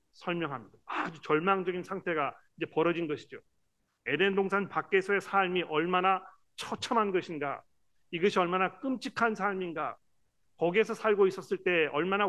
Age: 40-59